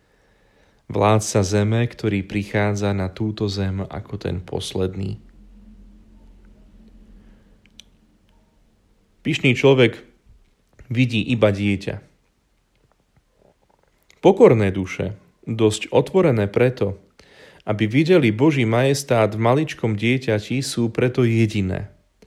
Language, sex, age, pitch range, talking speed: Slovak, male, 30-49, 100-135 Hz, 80 wpm